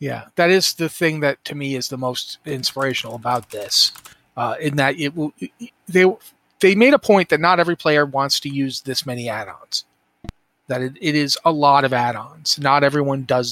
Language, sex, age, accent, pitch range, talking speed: English, male, 30-49, American, 135-170 Hz, 200 wpm